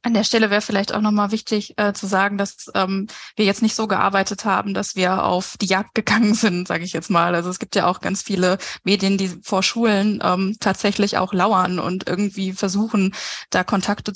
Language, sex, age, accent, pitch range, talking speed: German, female, 20-39, German, 190-215 Hz, 210 wpm